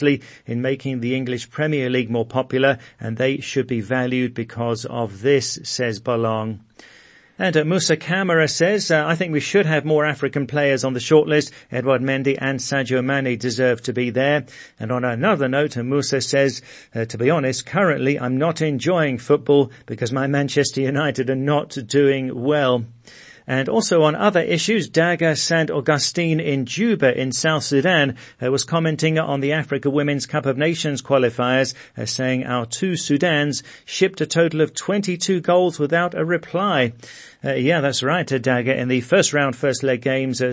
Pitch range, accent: 125-155 Hz, British